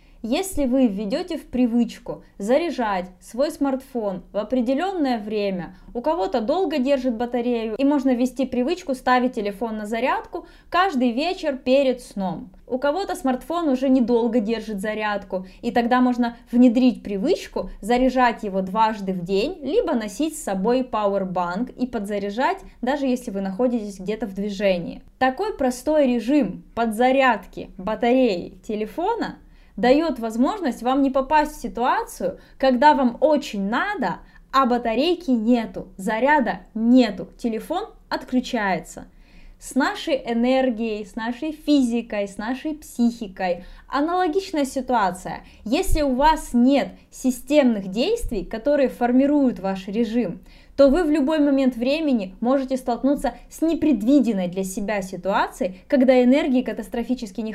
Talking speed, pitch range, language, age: 125 wpm, 220-275 Hz, Russian, 20-39